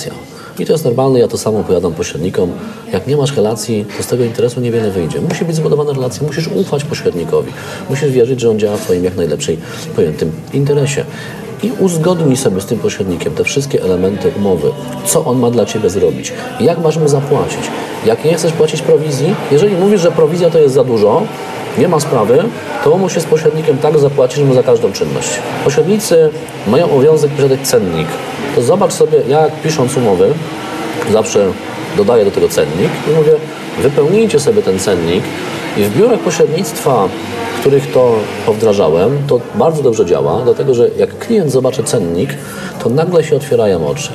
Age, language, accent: 40-59, Polish, native